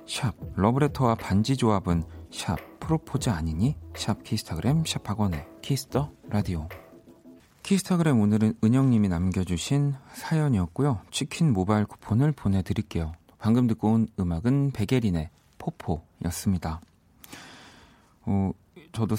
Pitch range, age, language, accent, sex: 85-125 Hz, 40-59, Korean, native, male